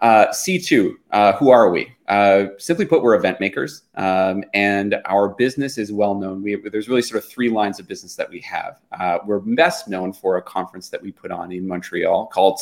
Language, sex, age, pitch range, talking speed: English, male, 30-49, 95-120 Hz, 215 wpm